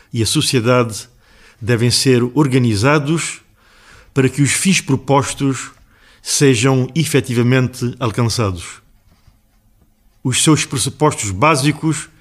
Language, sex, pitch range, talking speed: Portuguese, male, 115-150 Hz, 90 wpm